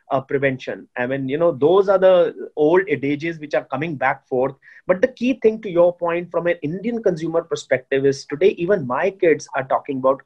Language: English